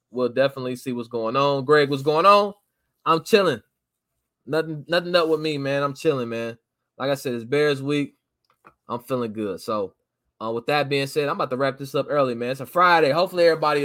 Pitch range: 120-150 Hz